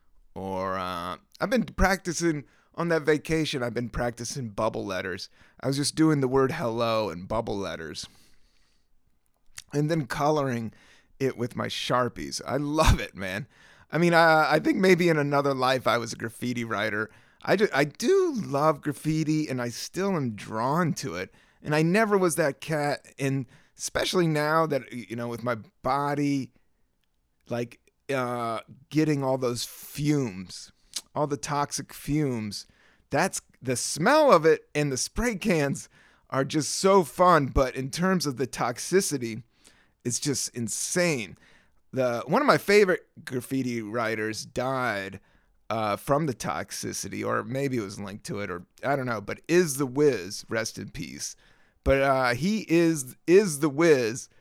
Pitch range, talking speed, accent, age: 115-155 Hz, 160 wpm, American, 30-49